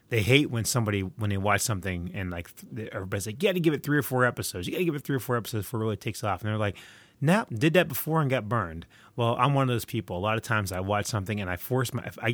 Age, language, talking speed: 30-49, English, 305 wpm